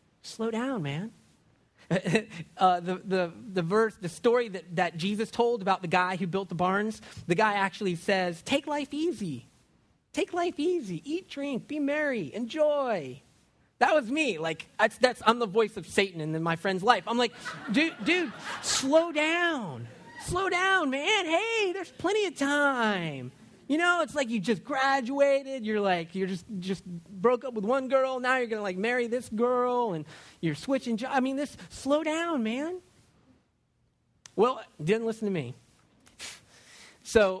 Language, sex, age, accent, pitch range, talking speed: English, male, 30-49, American, 185-275 Hz, 170 wpm